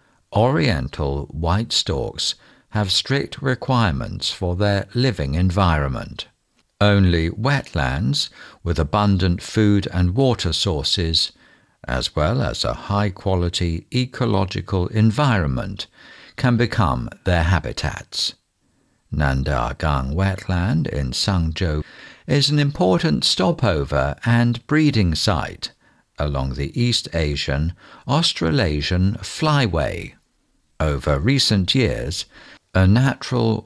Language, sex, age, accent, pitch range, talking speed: English, male, 60-79, British, 80-115 Hz, 95 wpm